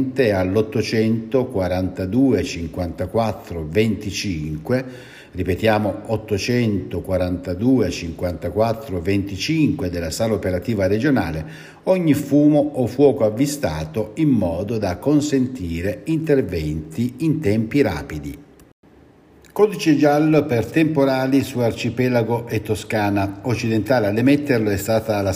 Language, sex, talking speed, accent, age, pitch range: Italian, male, 90 wpm, native, 60-79, 95-130 Hz